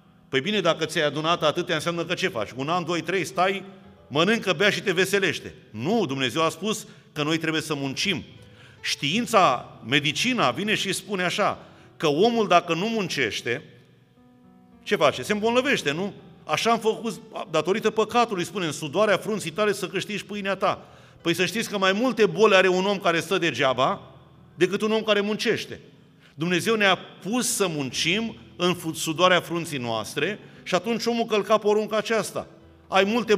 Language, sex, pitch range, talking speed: Romanian, male, 155-200 Hz, 170 wpm